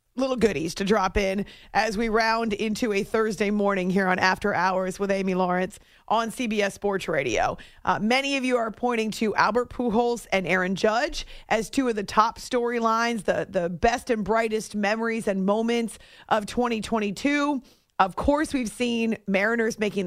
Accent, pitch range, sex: American, 210-255 Hz, female